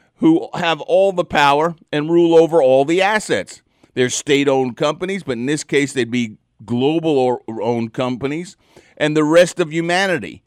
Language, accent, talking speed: English, American, 155 wpm